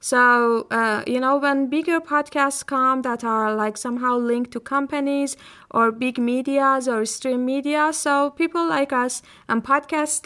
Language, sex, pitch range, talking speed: Persian, female, 230-290 Hz, 160 wpm